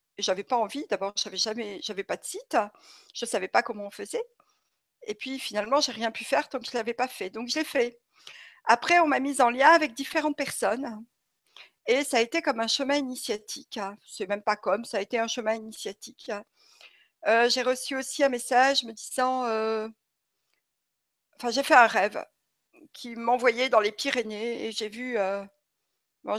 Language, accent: French, French